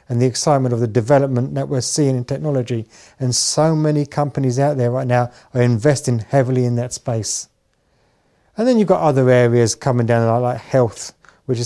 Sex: male